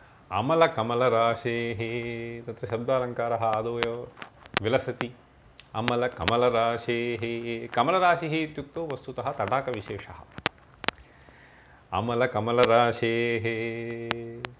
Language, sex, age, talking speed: Hindi, male, 30-49, 40 wpm